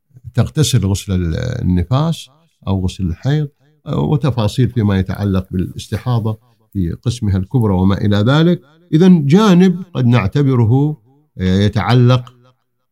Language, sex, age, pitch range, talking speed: Arabic, male, 50-69, 105-145 Hz, 100 wpm